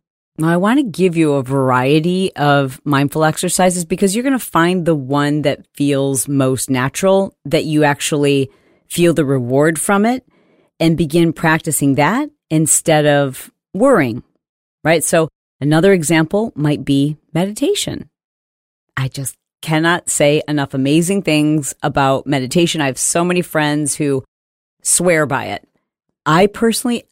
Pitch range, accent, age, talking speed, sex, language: 140-175 Hz, American, 40-59, 135 wpm, female, English